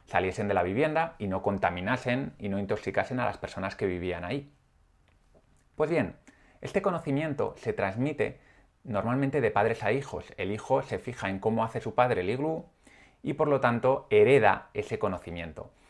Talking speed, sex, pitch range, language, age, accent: 170 wpm, male, 100-140 Hz, Spanish, 30-49, Spanish